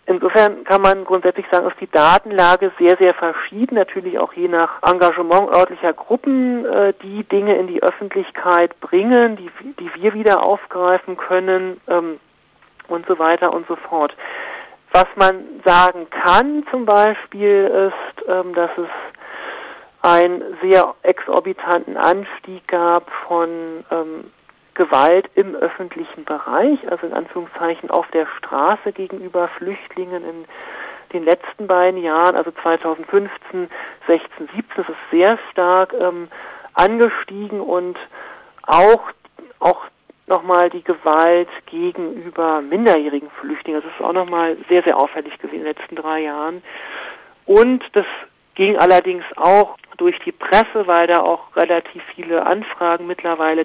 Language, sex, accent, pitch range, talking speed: German, male, German, 165-205 Hz, 135 wpm